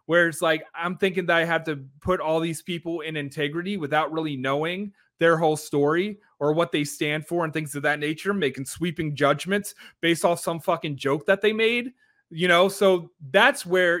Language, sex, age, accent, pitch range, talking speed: English, male, 30-49, American, 150-185 Hz, 200 wpm